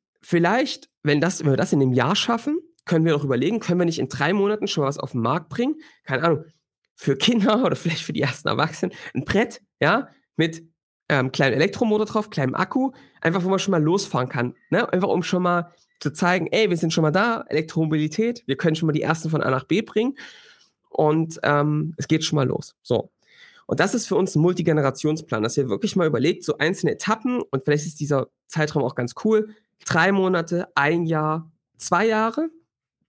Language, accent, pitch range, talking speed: German, German, 150-215 Hz, 210 wpm